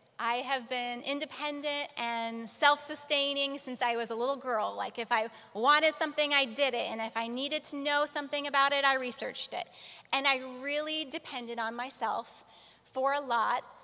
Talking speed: 180 wpm